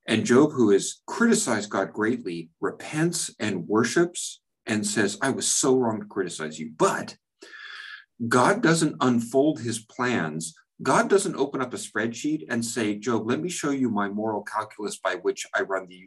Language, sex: English, male